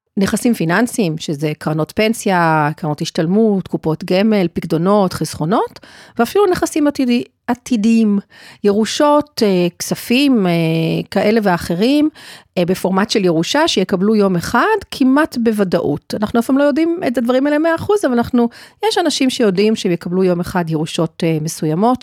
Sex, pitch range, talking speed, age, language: female, 175-255 Hz, 125 wpm, 40-59, Hebrew